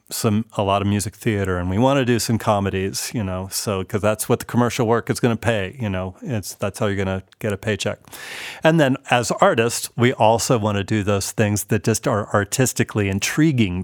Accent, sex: American, male